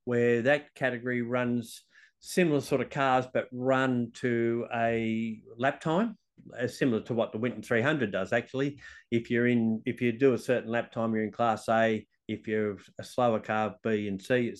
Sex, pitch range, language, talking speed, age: male, 115-135 Hz, English, 190 wpm, 50-69